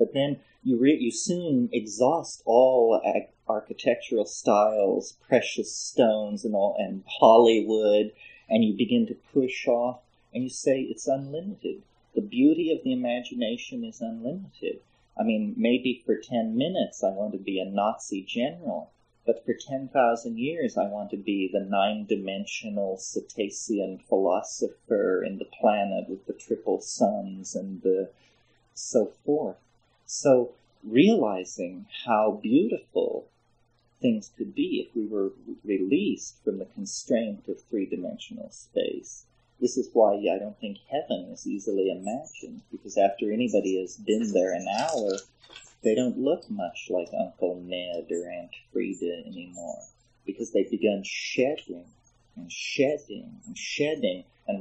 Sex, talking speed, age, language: male, 140 wpm, 30-49, English